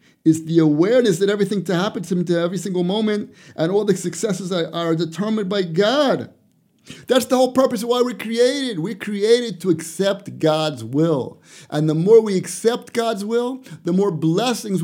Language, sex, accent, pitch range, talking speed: English, male, American, 170-225 Hz, 185 wpm